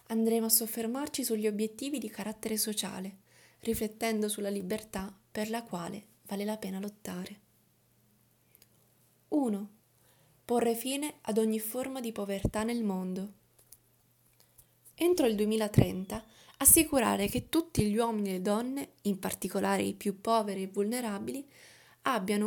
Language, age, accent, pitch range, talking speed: Italian, 20-39, native, 200-245 Hz, 125 wpm